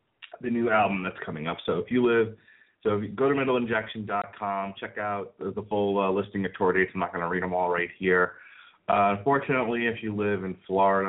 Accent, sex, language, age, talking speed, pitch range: American, male, English, 30-49, 220 wpm, 95-110 Hz